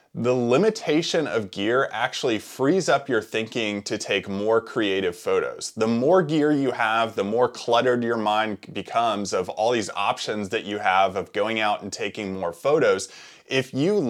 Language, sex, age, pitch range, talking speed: English, male, 20-39, 105-130 Hz, 175 wpm